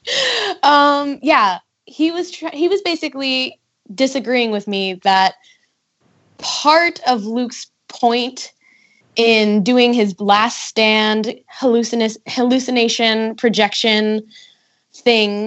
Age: 10-29